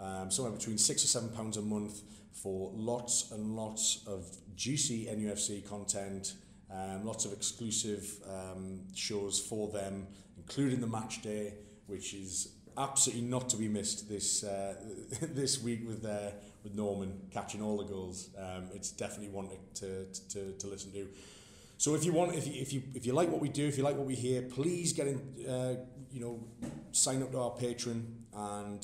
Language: English